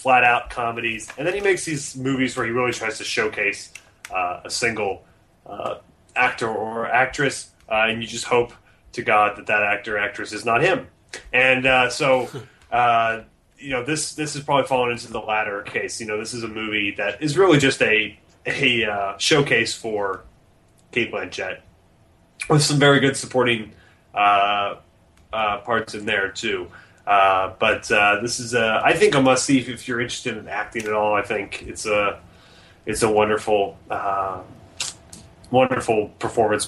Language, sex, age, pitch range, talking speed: English, male, 30-49, 105-130 Hz, 175 wpm